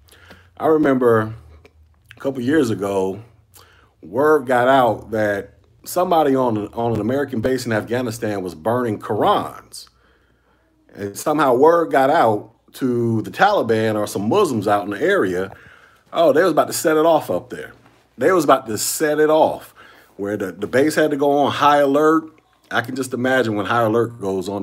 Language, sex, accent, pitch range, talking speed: English, male, American, 100-130 Hz, 180 wpm